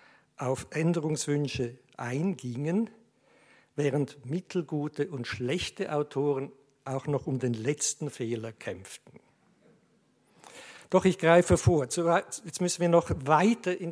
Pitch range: 130-165 Hz